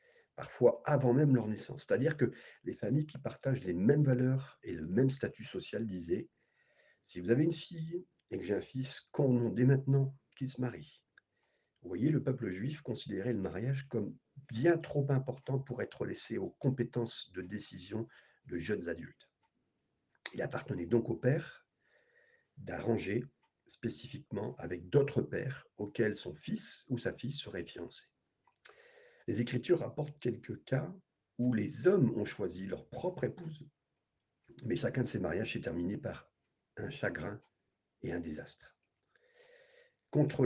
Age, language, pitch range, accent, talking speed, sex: 50-69, French, 120-150 Hz, French, 155 wpm, male